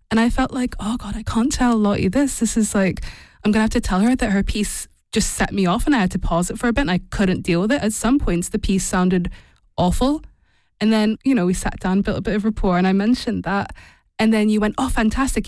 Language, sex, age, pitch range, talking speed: English, female, 20-39, 185-220 Hz, 280 wpm